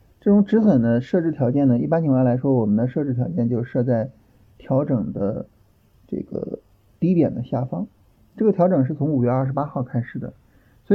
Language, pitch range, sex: Chinese, 120-155 Hz, male